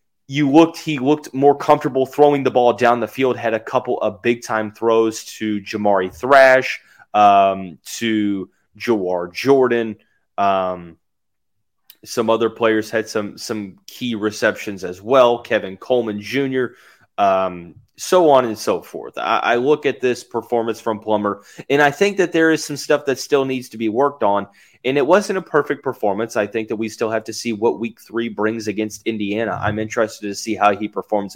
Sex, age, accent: male, 30-49, American